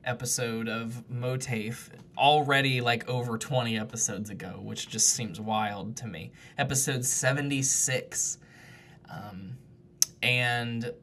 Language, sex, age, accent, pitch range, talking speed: English, male, 20-39, American, 120-145 Hz, 105 wpm